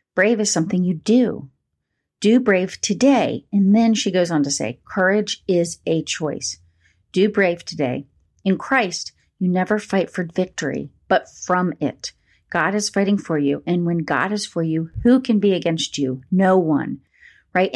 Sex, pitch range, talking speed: female, 170-205 Hz, 170 wpm